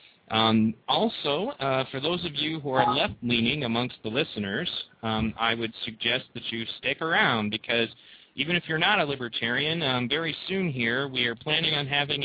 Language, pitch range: English, 120-150 Hz